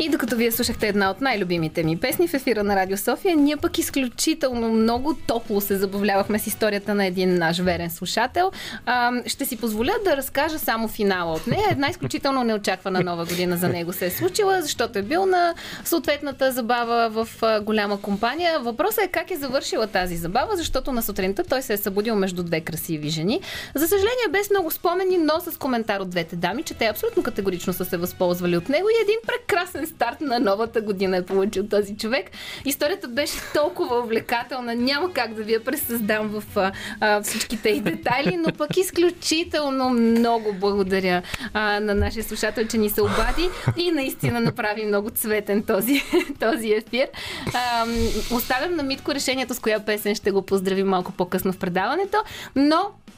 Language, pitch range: Bulgarian, 200-285 Hz